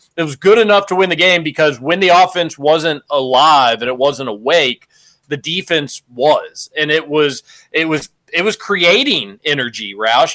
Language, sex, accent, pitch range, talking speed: English, male, American, 140-170 Hz, 180 wpm